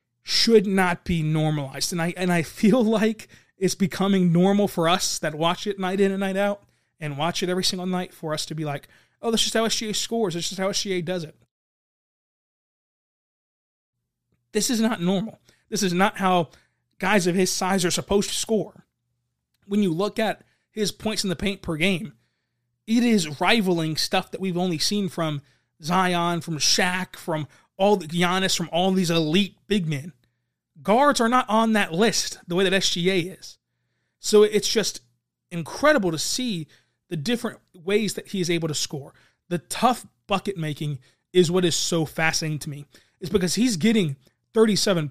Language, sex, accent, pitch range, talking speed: English, male, American, 160-205 Hz, 180 wpm